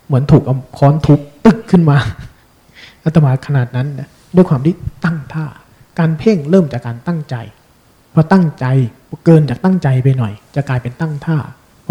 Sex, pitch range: male, 130-170 Hz